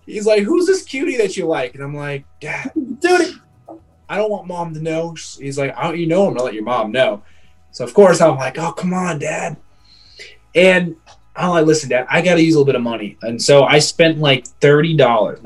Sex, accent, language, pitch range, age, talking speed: male, American, English, 135-195 Hz, 20-39, 235 wpm